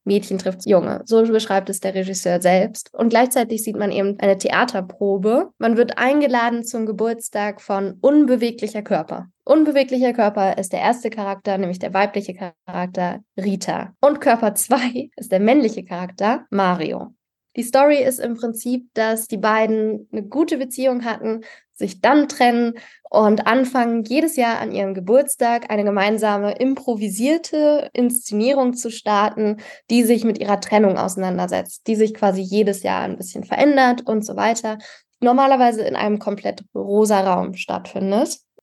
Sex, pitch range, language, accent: female, 200-245 Hz, German, German